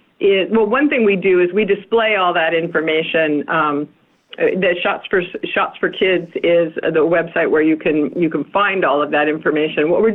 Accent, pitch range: American, 165-220 Hz